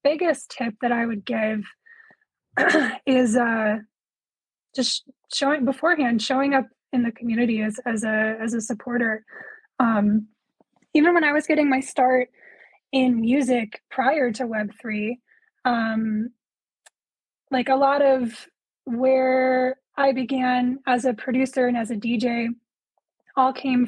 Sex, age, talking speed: female, 10-29, 130 wpm